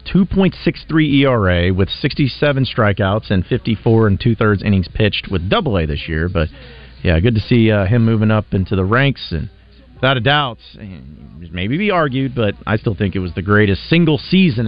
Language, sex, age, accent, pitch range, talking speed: English, male, 40-59, American, 85-115 Hz, 175 wpm